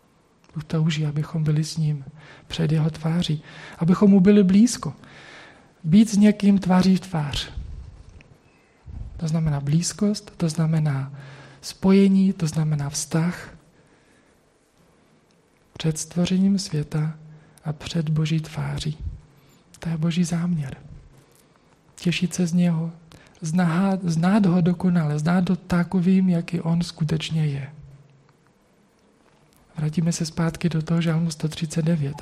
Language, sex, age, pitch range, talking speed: Czech, male, 40-59, 150-175 Hz, 110 wpm